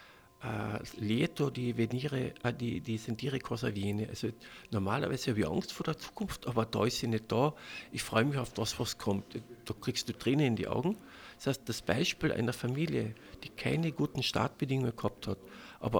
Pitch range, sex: 115-150 Hz, male